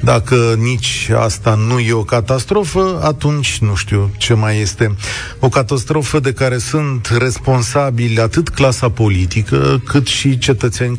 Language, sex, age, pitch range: Romanian, male, 30-49, 105-125 Hz